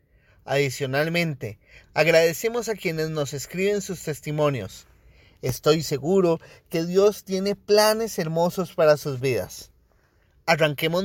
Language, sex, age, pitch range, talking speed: Spanish, male, 30-49, 135-185 Hz, 105 wpm